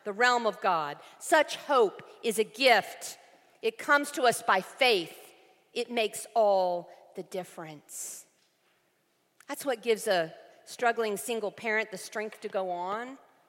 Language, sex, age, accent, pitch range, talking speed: English, female, 50-69, American, 215-280 Hz, 140 wpm